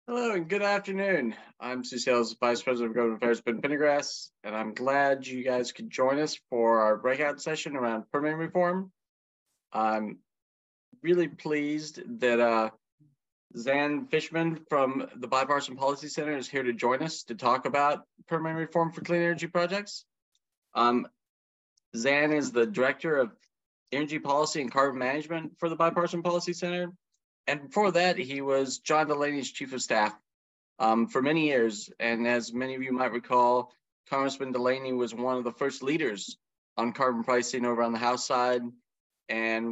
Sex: male